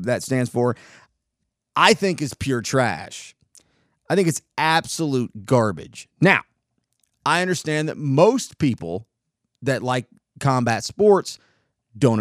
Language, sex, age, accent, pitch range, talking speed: English, male, 30-49, American, 120-155 Hz, 120 wpm